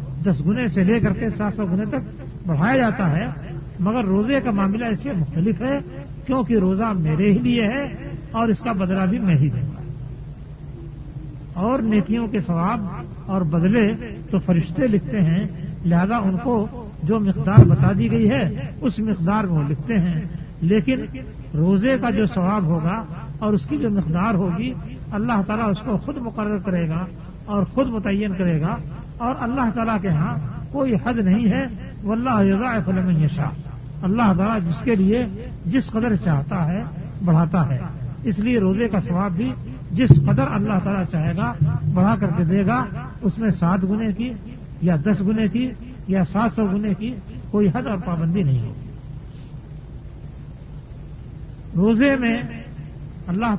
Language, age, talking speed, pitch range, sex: Urdu, 50-69, 165 wpm, 160-215 Hz, male